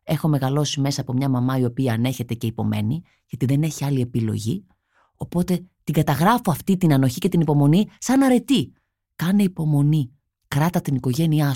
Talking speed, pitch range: 165 wpm, 135-180 Hz